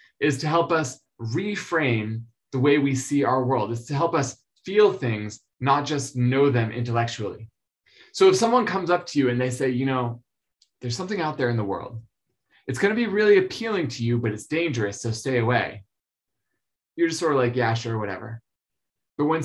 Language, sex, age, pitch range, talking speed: English, male, 20-39, 120-150 Hz, 195 wpm